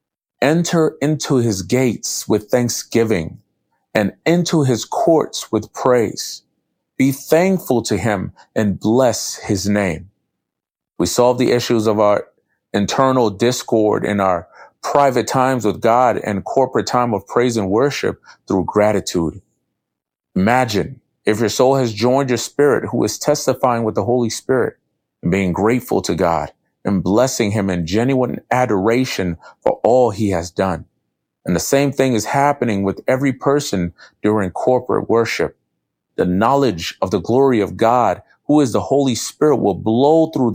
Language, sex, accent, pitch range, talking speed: English, male, American, 105-135 Hz, 150 wpm